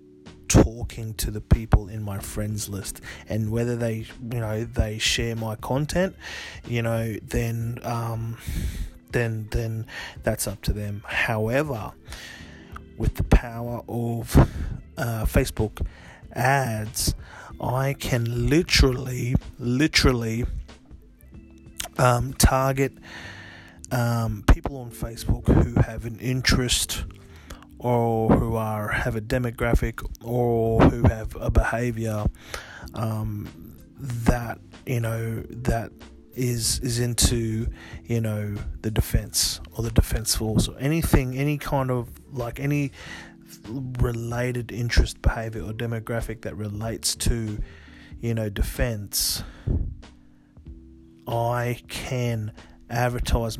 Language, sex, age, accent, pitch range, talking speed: English, male, 30-49, Australian, 95-120 Hz, 110 wpm